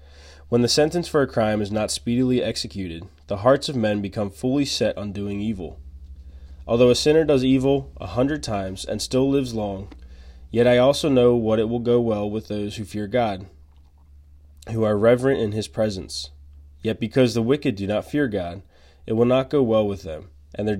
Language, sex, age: English, male, 20-39